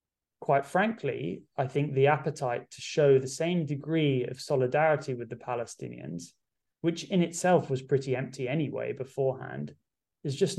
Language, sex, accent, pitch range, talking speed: English, male, British, 125-145 Hz, 145 wpm